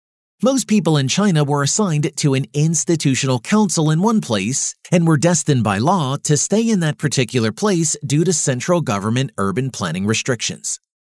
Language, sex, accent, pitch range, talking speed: English, male, American, 120-175 Hz, 165 wpm